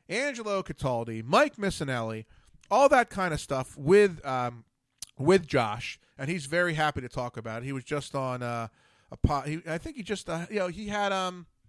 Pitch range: 125-200 Hz